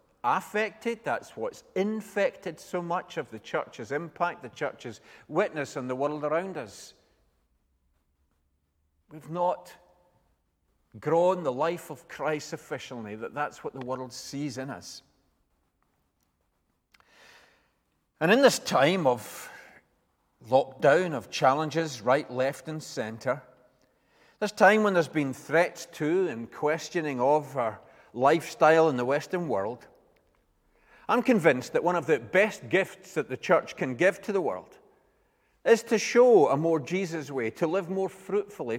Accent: British